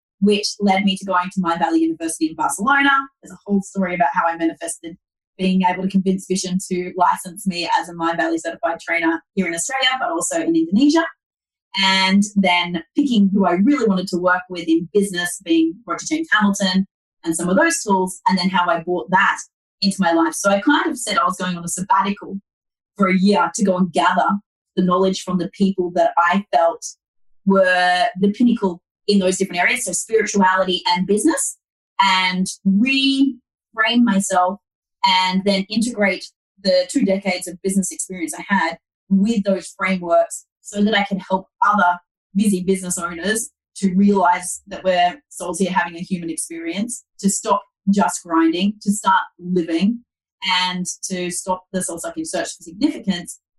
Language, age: English, 30-49